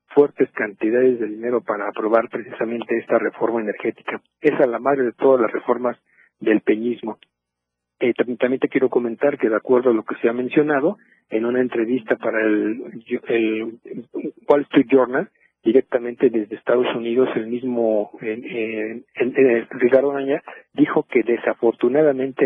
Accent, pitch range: Mexican, 115-140 Hz